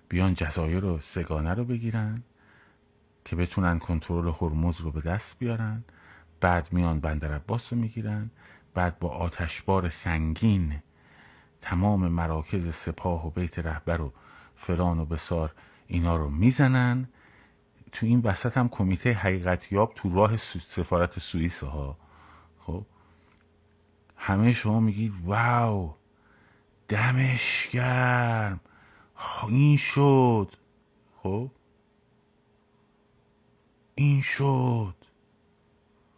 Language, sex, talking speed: Persian, male, 100 wpm